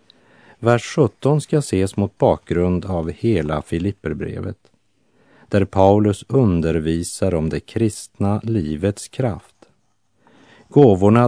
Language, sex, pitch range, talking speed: Italian, male, 85-115 Hz, 95 wpm